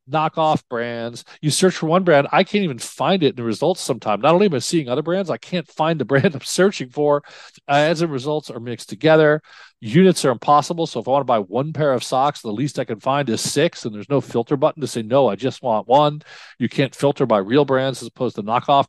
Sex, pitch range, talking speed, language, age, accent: male, 115-155 Hz, 250 wpm, English, 40-59, American